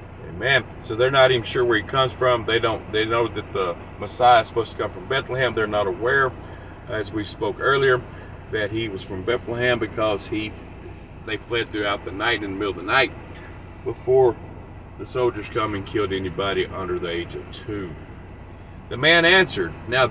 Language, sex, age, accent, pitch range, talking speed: English, male, 40-59, American, 95-130 Hz, 190 wpm